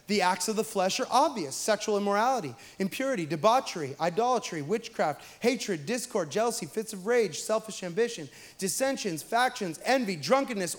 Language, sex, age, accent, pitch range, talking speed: English, male, 30-49, American, 185-235 Hz, 140 wpm